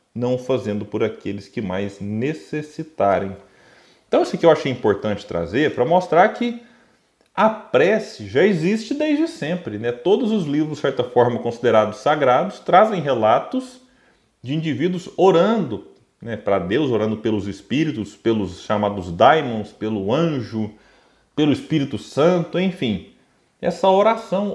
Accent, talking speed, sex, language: Brazilian, 130 wpm, male, Portuguese